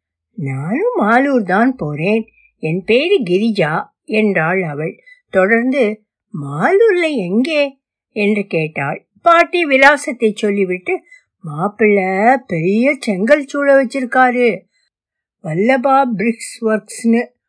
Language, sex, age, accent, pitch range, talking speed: Tamil, female, 60-79, native, 185-275 Hz, 80 wpm